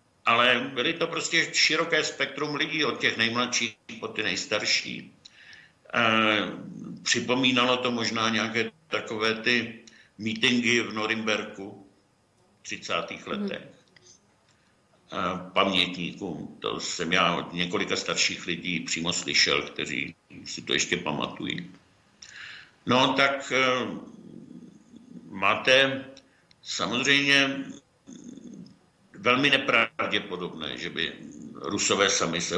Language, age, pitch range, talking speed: Czech, 60-79, 100-120 Hz, 100 wpm